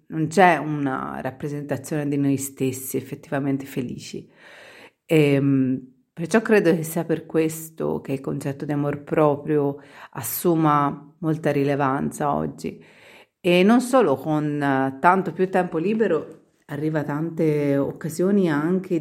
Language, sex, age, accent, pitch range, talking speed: Italian, female, 40-59, native, 145-175 Hz, 120 wpm